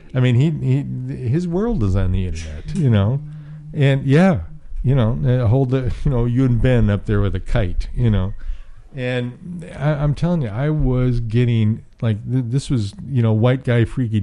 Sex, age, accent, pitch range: male, 50-69, American, 105-130 Hz